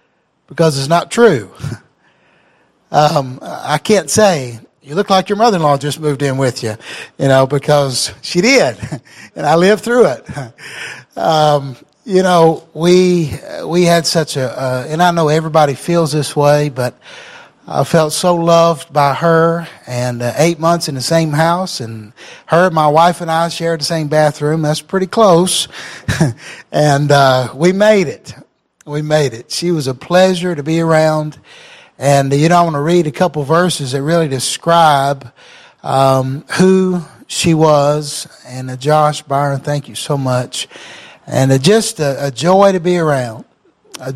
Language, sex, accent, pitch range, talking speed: English, male, American, 140-170 Hz, 165 wpm